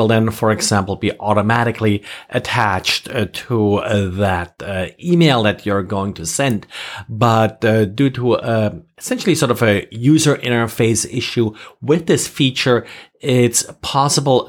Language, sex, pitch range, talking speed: English, male, 110-135 Hz, 140 wpm